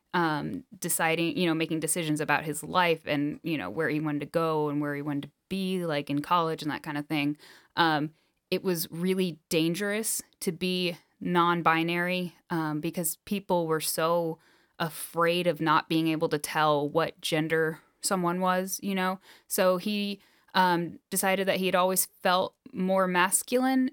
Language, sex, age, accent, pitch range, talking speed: English, female, 10-29, American, 155-190 Hz, 170 wpm